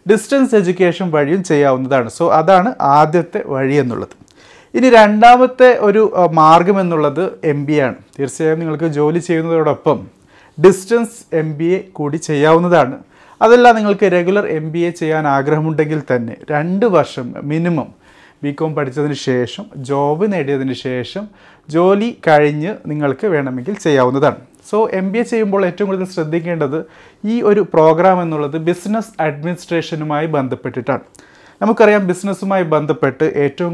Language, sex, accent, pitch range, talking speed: Malayalam, male, native, 145-185 Hz, 120 wpm